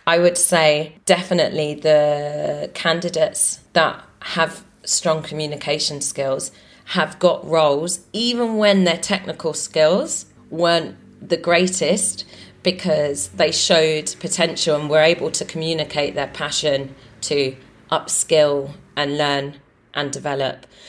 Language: English